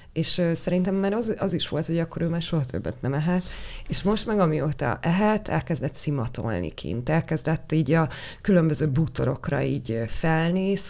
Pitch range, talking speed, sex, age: 145-165 Hz, 165 wpm, female, 30-49